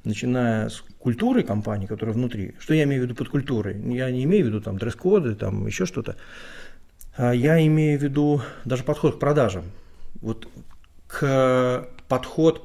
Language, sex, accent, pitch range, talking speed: Russian, male, native, 100-130 Hz, 160 wpm